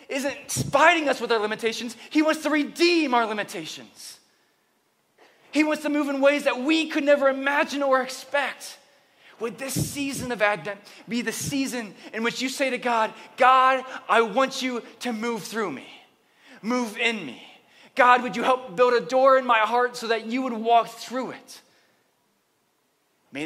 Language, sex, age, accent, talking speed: English, male, 20-39, American, 175 wpm